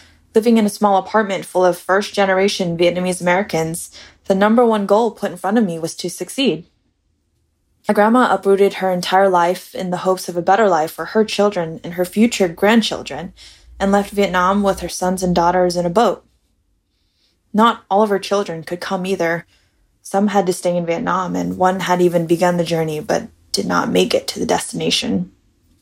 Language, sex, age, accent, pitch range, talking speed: English, female, 20-39, American, 170-200 Hz, 190 wpm